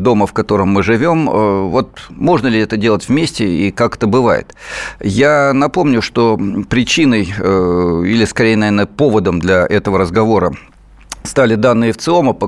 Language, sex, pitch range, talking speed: Russian, male, 95-120 Hz, 145 wpm